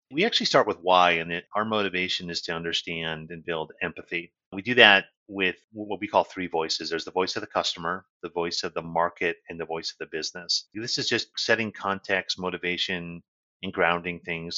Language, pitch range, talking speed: English, 85-95 Hz, 200 wpm